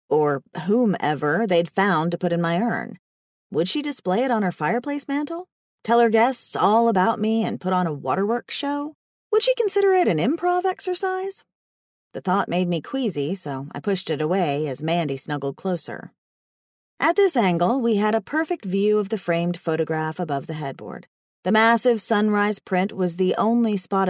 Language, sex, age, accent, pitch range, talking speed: English, female, 30-49, American, 165-235 Hz, 180 wpm